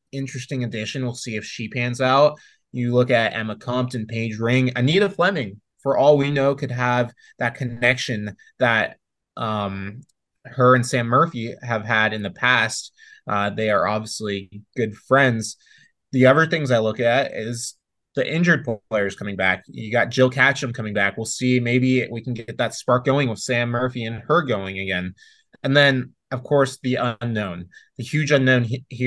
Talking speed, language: 180 wpm, English